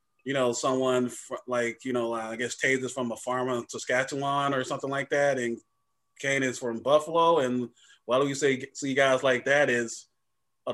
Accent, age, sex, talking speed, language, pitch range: American, 20-39, male, 200 wpm, English, 120-140 Hz